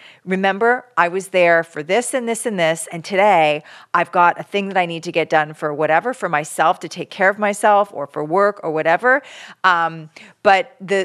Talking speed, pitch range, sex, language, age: 210 wpm, 180-235 Hz, female, English, 40-59